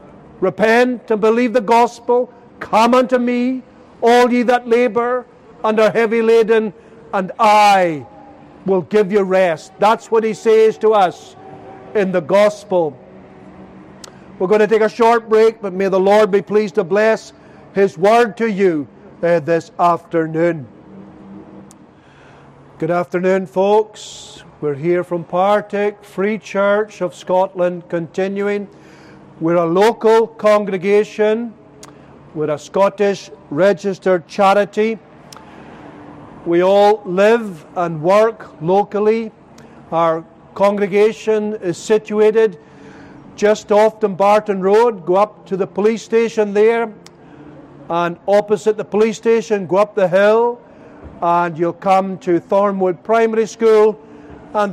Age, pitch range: 50-69, 180-220 Hz